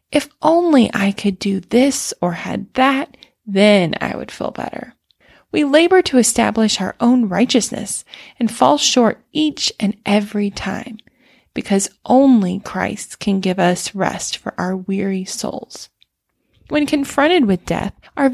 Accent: American